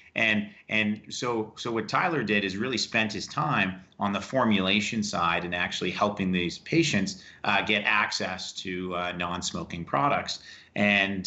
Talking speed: 155 wpm